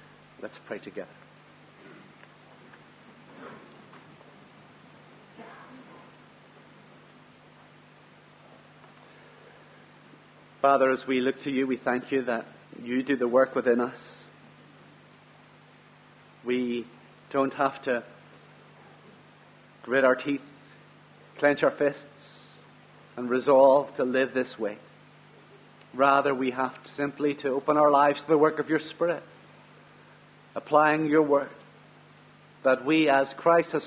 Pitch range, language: 135-160 Hz, English